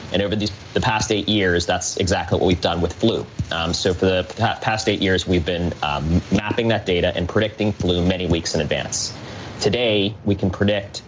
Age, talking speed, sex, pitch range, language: 30-49, 200 wpm, male, 90-110 Hz, English